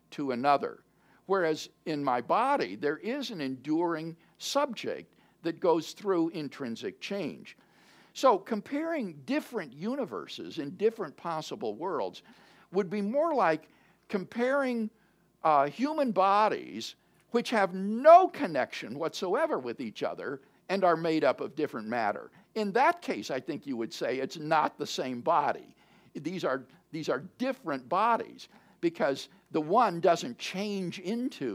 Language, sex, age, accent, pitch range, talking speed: English, male, 50-69, American, 150-215 Hz, 135 wpm